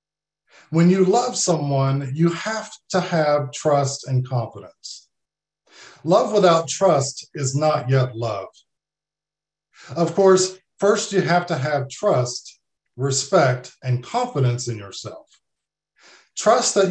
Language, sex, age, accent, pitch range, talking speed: English, male, 50-69, American, 130-175 Hz, 115 wpm